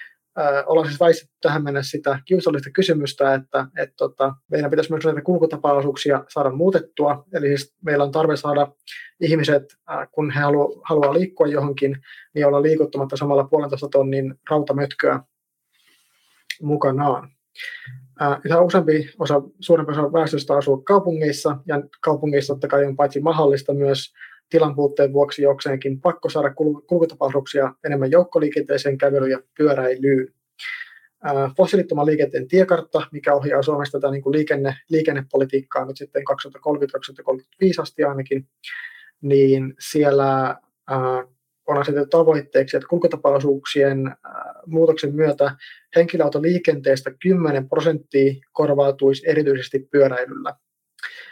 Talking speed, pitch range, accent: 110 wpm, 140-160 Hz, native